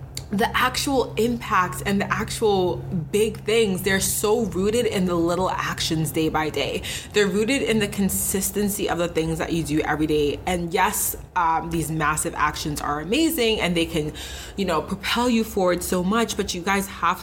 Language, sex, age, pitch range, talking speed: English, female, 20-39, 155-205 Hz, 185 wpm